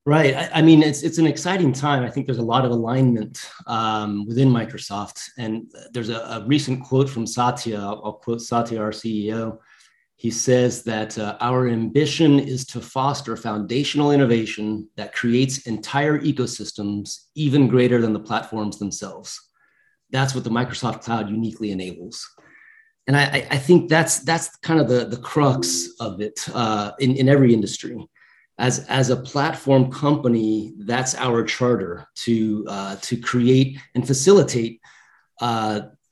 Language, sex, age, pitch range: English, male, 30-49, 110-140 Hz